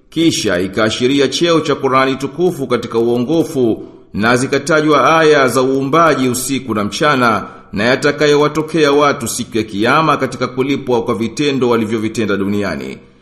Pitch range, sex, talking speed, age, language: 120-155 Hz, male, 125 wpm, 50-69, Swahili